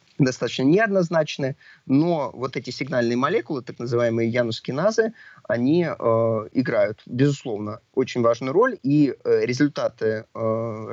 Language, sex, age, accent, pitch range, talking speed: Russian, male, 20-39, native, 115-145 Hz, 110 wpm